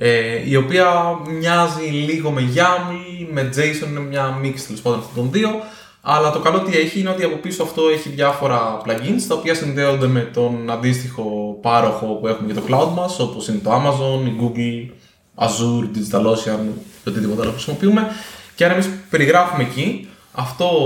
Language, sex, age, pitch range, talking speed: Greek, male, 20-39, 115-160 Hz, 175 wpm